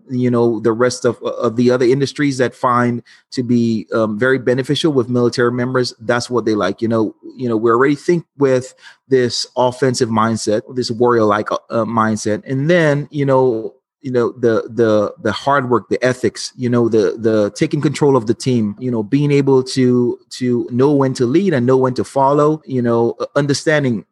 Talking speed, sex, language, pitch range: 195 wpm, male, English, 115-135 Hz